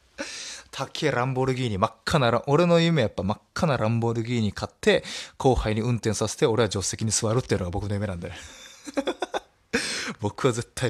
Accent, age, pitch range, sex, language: native, 20-39, 90-125 Hz, male, Japanese